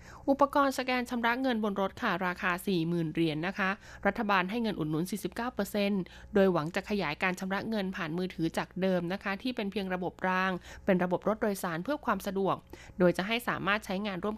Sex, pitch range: female, 180-220 Hz